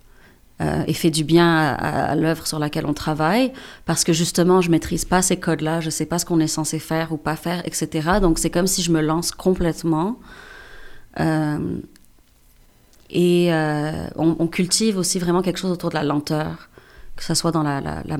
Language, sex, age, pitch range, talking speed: French, female, 30-49, 155-175 Hz, 205 wpm